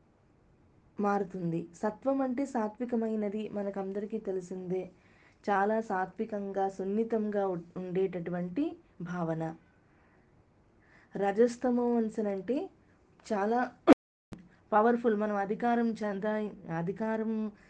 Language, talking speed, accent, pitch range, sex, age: Telugu, 70 wpm, native, 185-230 Hz, female, 20-39